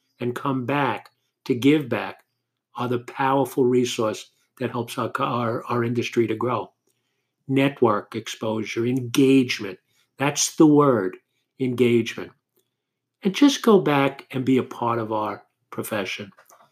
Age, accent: 50-69, American